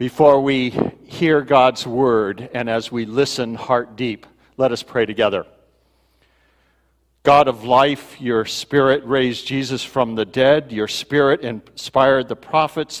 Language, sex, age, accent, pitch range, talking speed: English, male, 60-79, American, 110-140 Hz, 140 wpm